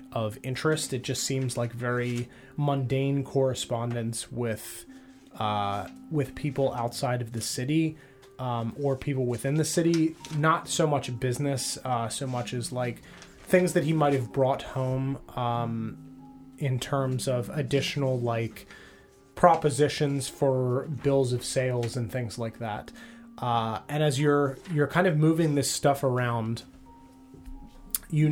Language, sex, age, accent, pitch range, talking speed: English, male, 20-39, American, 120-145 Hz, 140 wpm